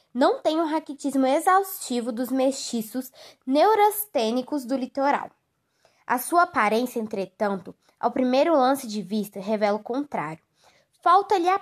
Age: 10-29